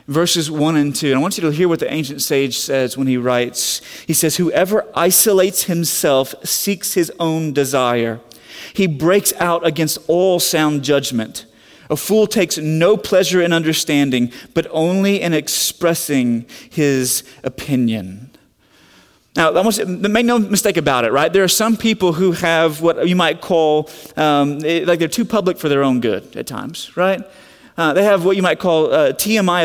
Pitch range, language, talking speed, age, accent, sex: 150-180 Hz, English, 175 wpm, 30-49, American, male